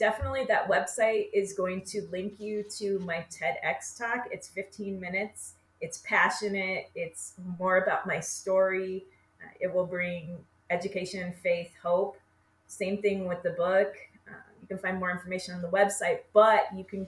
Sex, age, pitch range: female, 30-49, 170-200 Hz